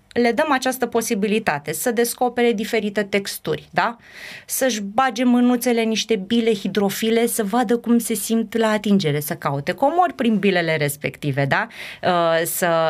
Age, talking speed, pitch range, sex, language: 20-39, 140 wpm, 170-225 Hz, female, Romanian